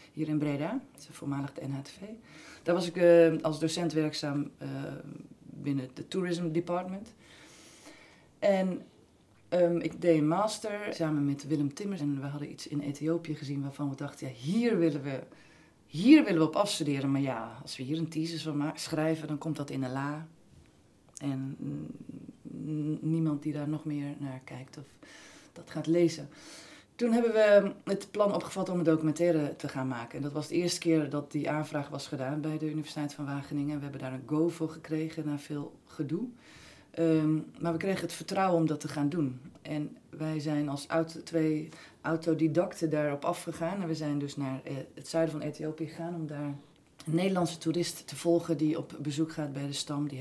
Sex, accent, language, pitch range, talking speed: female, Dutch, Dutch, 145-170 Hz, 185 wpm